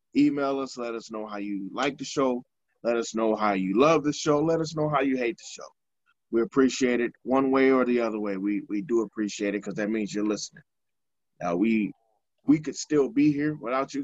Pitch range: 110-140 Hz